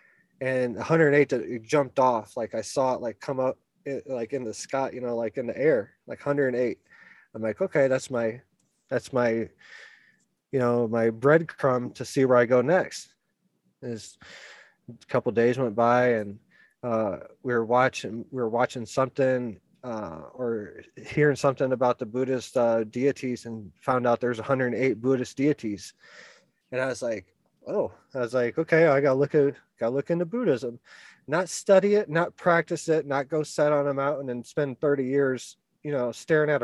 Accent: American